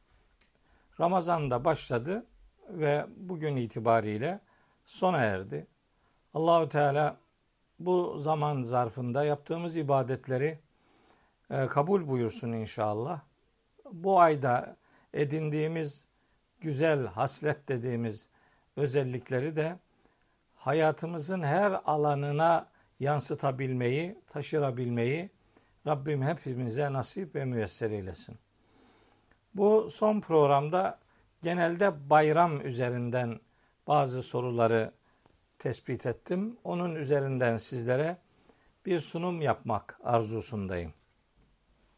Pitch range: 125-170 Hz